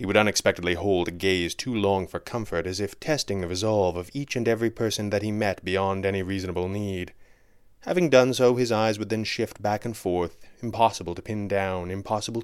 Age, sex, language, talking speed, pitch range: 30-49, male, English, 205 wpm, 95-115 Hz